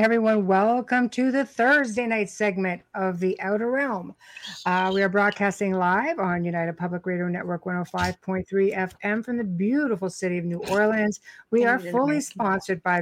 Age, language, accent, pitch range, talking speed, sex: 60-79, English, American, 180-220 Hz, 160 wpm, female